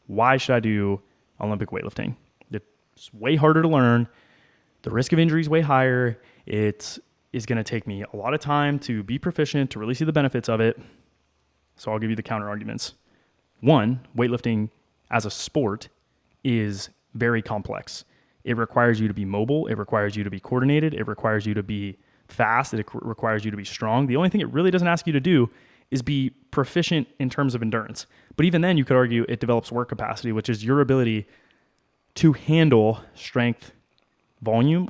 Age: 20-39